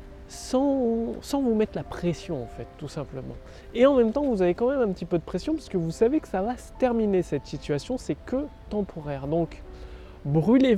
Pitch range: 165-230 Hz